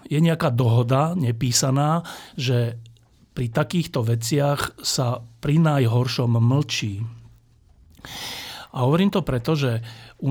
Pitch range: 120-145 Hz